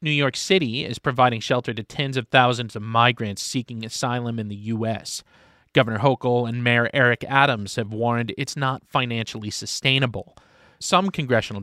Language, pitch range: English, 115-145 Hz